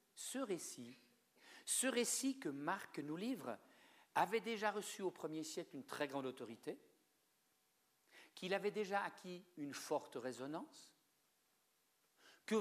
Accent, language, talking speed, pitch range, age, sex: French, French, 125 wpm, 160-245 Hz, 60-79, male